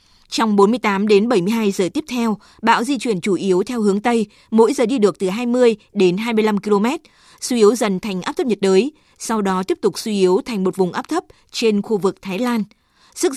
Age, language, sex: 20-39, Vietnamese, female